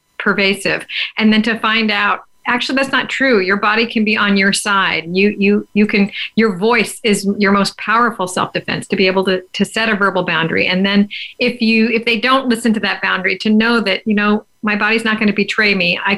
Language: English